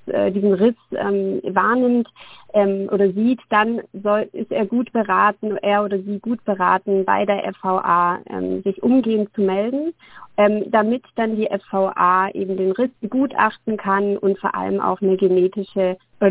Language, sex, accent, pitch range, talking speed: German, female, German, 195-225 Hz, 160 wpm